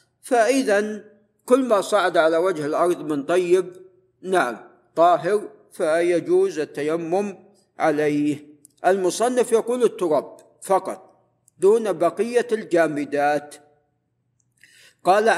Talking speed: 85 wpm